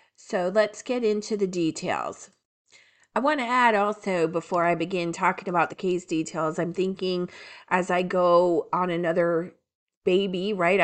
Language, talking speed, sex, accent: English, 150 wpm, female, American